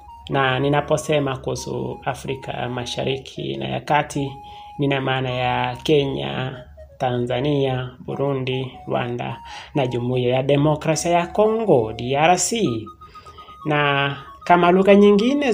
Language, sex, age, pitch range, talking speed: Swahili, male, 30-49, 125-185 Hz, 95 wpm